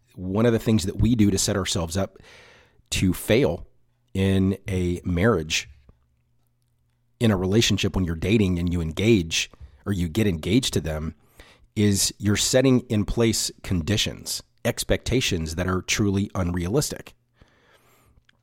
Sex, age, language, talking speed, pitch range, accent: male, 40-59, English, 135 wpm, 90-115 Hz, American